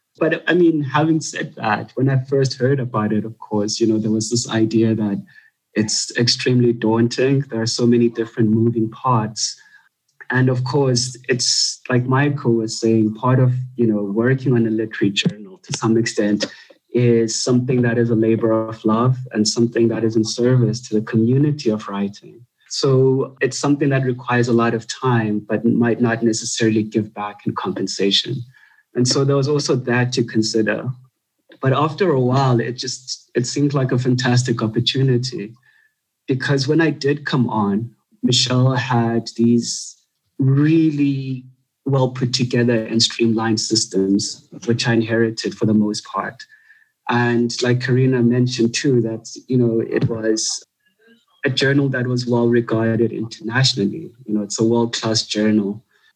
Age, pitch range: 20-39, 115-130 Hz